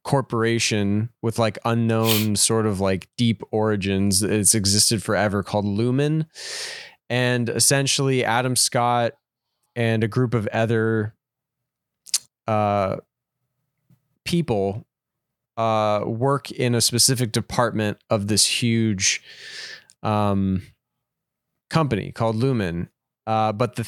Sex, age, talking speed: male, 20-39, 105 wpm